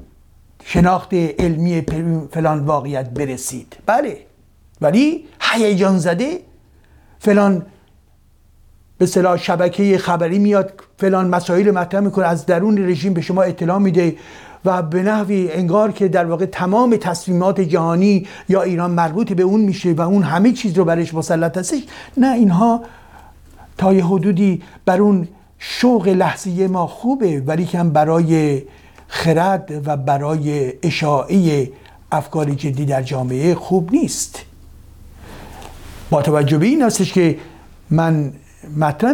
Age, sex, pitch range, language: 50-69, male, 150-190 Hz, Persian